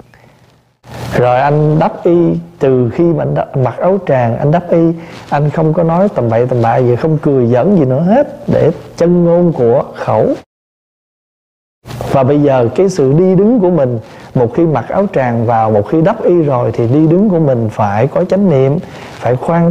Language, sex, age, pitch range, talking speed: Vietnamese, male, 20-39, 125-160 Hz, 200 wpm